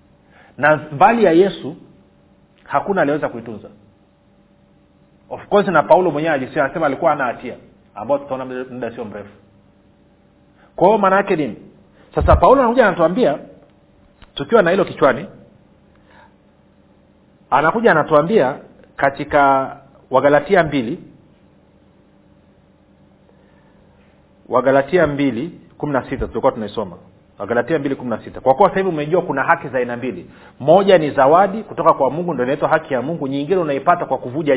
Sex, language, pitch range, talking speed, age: male, Swahili, 125-175 Hz, 120 wpm, 40-59